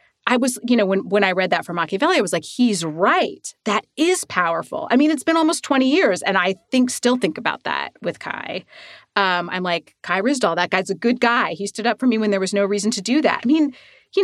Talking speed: 255 wpm